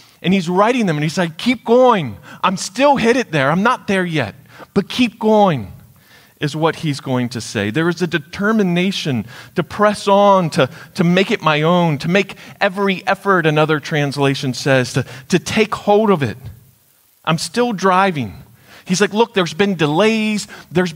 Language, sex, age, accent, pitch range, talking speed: English, male, 40-59, American, 140-210 Hz, 180 wpm